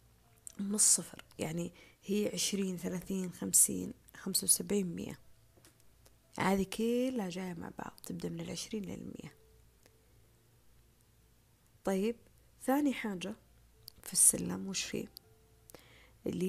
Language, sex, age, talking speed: Arabic, female, 30-49, 100 wpm